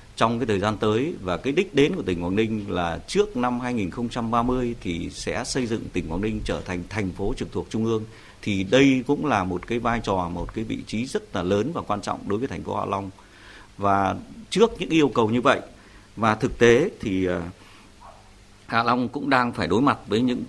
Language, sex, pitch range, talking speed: Vietnamese, male, 100-125 Hz, 225 wpm